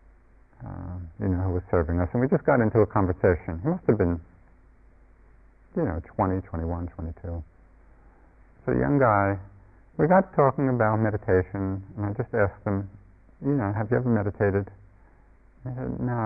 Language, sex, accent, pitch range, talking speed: English, male, American, 85-115 Hz, 175 wpm